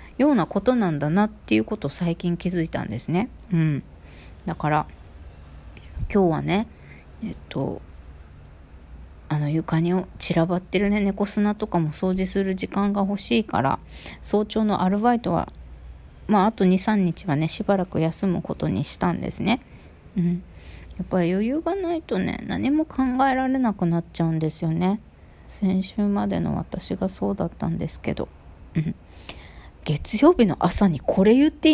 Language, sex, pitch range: Japanese, female, 155-210 Hz